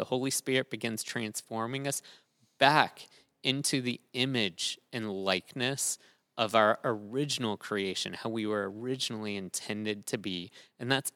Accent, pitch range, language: American, 110-140 Hz, English